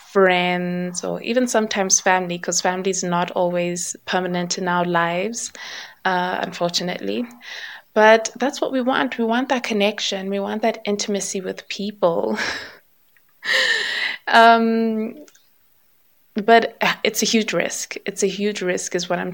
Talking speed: 135 wpm